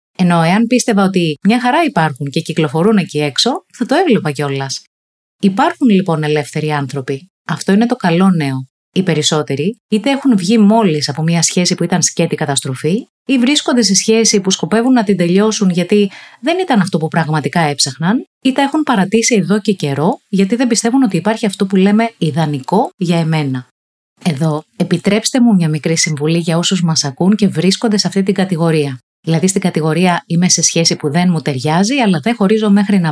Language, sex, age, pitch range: Greek, female, 30-49, 160-225 Hz